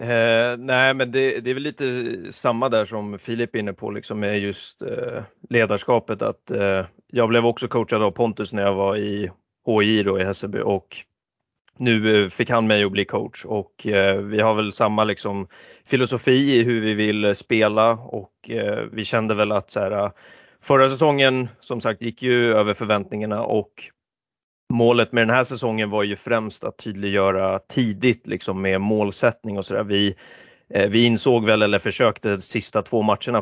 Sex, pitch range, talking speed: male, 100-120 Hz, 180 wpm